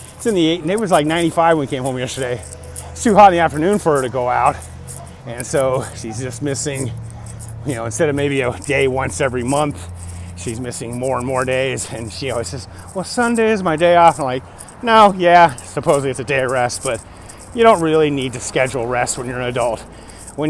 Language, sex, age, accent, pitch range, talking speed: English, male, 30-49, American, 110-155 Hz, 225 wpm